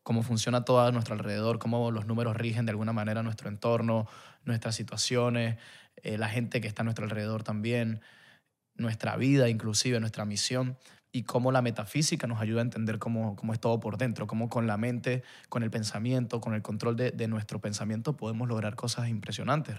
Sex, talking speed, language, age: male, 190 wpm, Spanish, 20-39